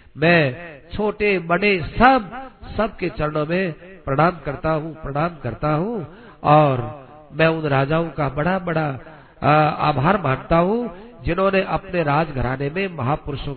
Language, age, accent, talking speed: Hindi, 50-69, native, 125 wpm